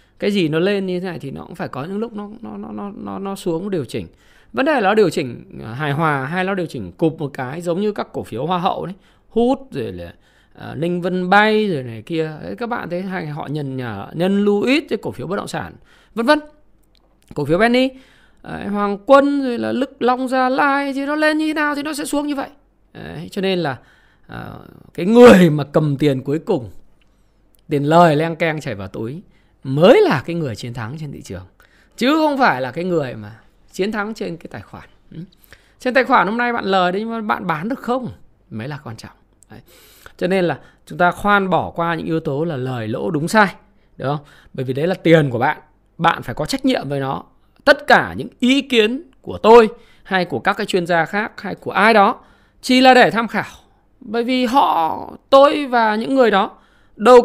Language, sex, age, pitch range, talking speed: Vietnamese, male, 20-39, 150-235 Hz, 230 wpm